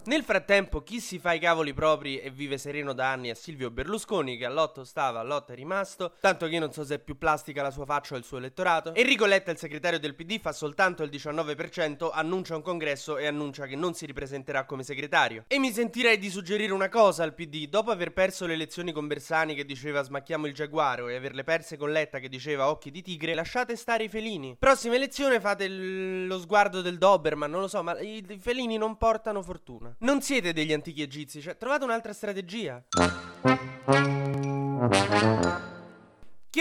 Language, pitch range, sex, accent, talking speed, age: Italian, 140-195 Hz, male, native, 200 wpm, 20-39